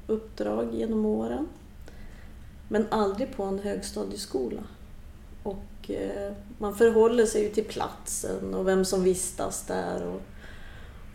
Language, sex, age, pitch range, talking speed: Swedish, female, 30-49, 155-210 Hz, 115 wpm